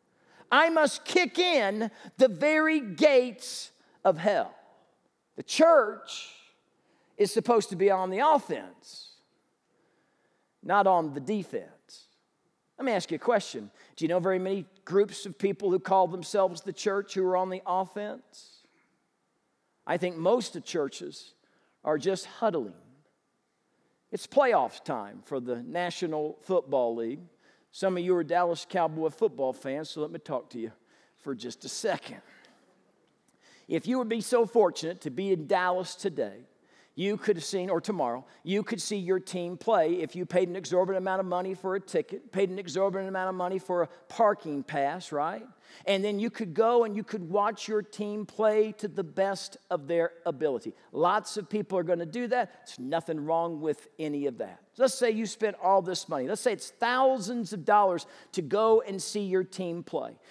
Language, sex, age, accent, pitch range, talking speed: English, male, 50-69, American, 175-230 Hz, 175 wpm